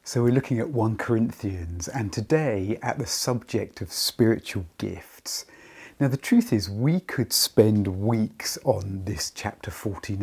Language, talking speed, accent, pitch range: English, 155 wpm, British, 95-130 Hz